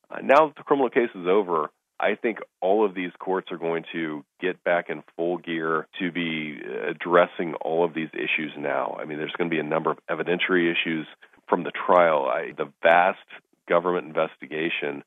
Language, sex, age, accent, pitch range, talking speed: English, male, 40-59, American, 75-85 Hz, 185 wpm